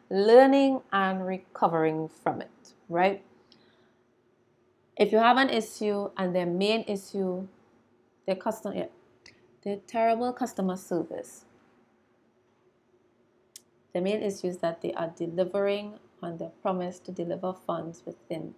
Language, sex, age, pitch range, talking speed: English, female, 20-39, 180-220 Hz, 115 wpm